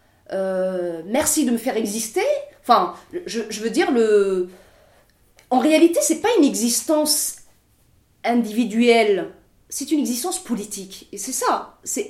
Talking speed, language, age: 135 wpm, French, 30-49